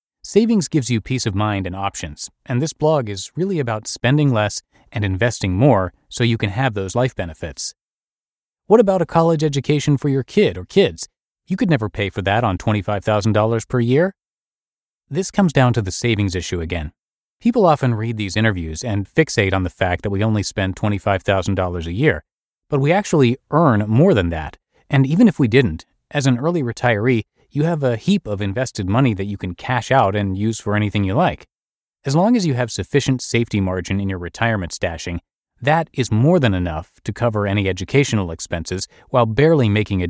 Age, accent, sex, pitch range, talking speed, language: 30-49, American, male, 100-140 Hz, 195 wpm, English